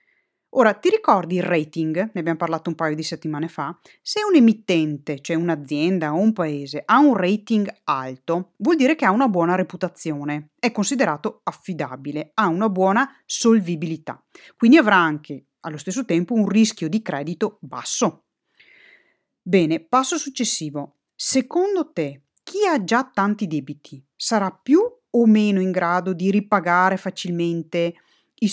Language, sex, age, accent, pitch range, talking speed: Italian, female, 30-49, native, 165-235 Hz, 145 wpm